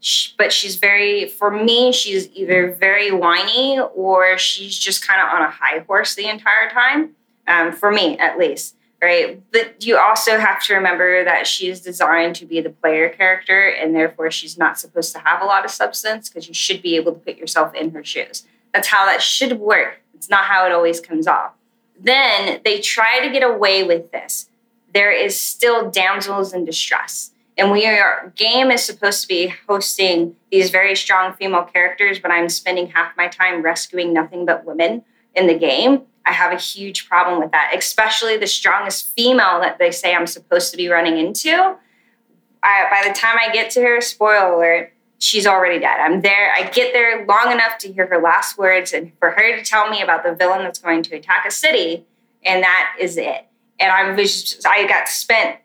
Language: English